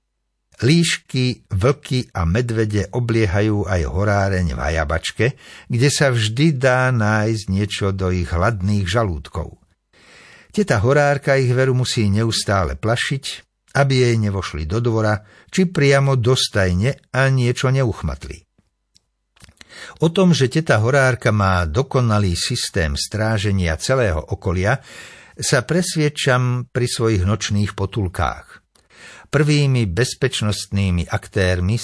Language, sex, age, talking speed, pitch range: Slovak, male, 60-79, 105 wpm, 95-130 Hz